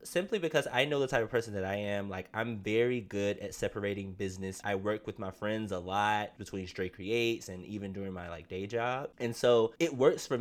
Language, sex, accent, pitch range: English, male, American, 100-120 Hz